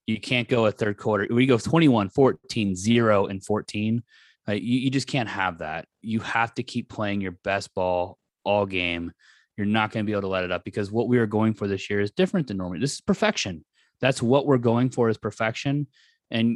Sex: male